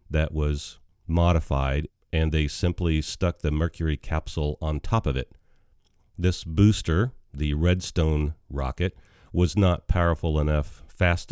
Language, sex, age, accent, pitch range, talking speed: English, male, 40-59, American, 75-95 Hz, 125 wpm